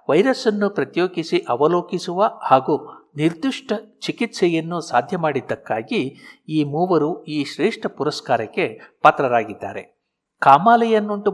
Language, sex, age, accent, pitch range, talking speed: Kannada, male, 60-79, native, 140-205 Hz, 80 wpm